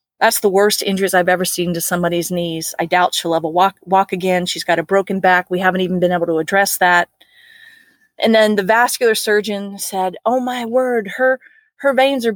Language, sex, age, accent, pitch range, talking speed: English, female, 30-49, American, 195-245 Hz, 210 wpm